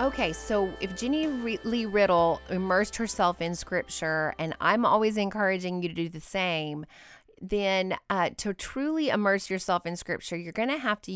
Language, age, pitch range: English, 30-49, 165-225 Hz